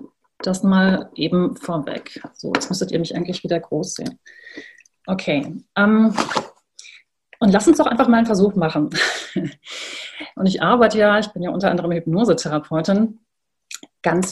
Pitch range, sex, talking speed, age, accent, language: 175-210 Hz, female, 145 wpm, 30-49, German, German